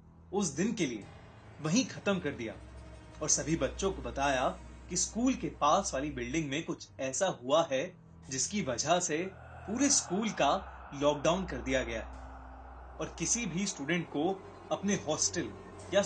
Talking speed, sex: 50 wpm, male